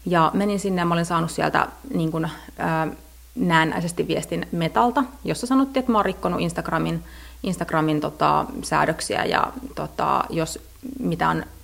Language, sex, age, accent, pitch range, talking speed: Finnish, female, 30-49, native, 165-240 Hz, 140 wpm